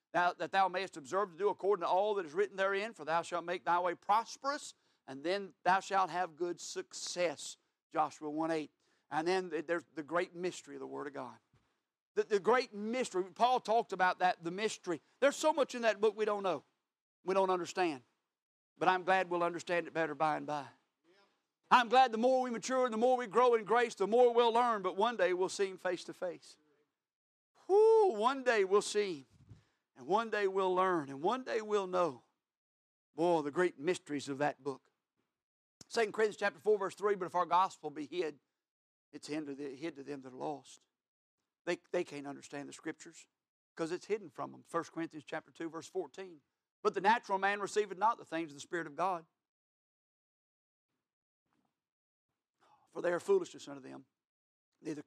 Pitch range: 160-230 Hz